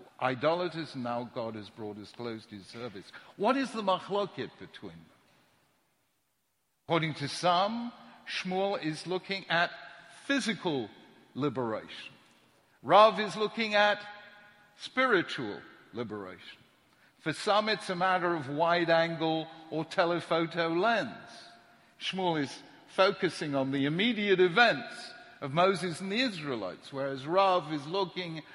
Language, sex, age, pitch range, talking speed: English, male, 60-79, 155-205 Hz, 120 wpm